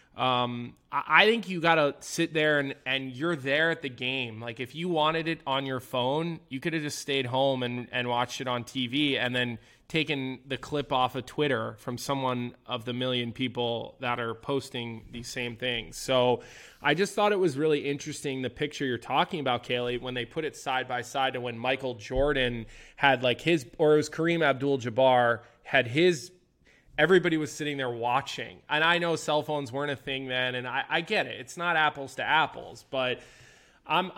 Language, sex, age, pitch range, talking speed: English, male, 20-39, 125-150 Hz, 205 wpm